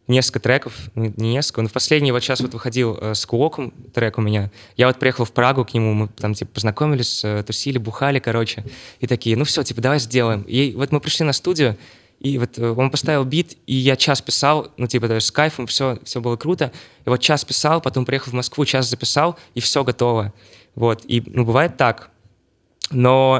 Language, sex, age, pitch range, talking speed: Russian, male, 20-39, 115-130 Hz, 210 wpm